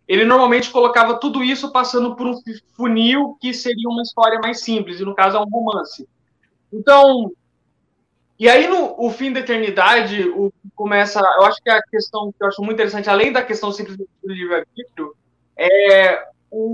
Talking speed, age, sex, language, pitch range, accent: 185 wpm, 20-39, male, Portuguese, 190-240 Hz, Brazilian